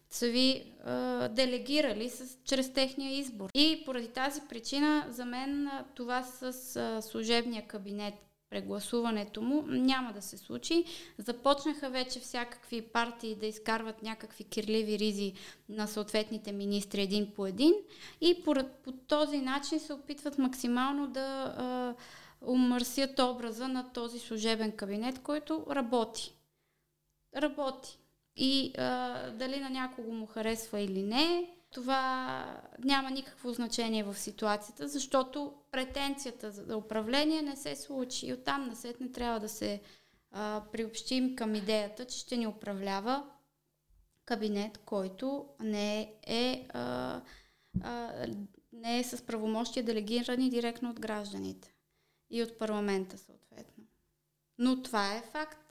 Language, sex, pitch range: Bulgarian, female, 215-270 Hz